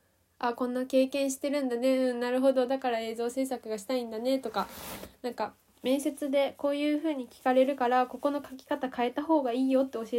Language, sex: Japanese, female